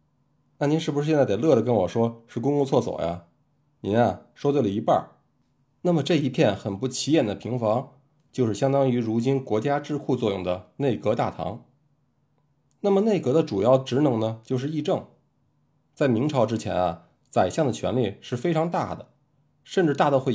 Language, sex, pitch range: Chinese, male, 115-150 Hz